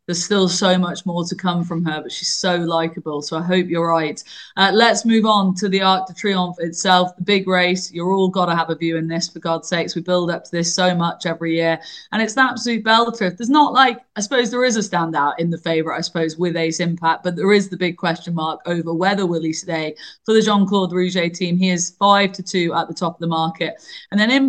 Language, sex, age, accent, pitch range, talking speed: English, female, 20-39, British, 175-210 Hz, 260 wpm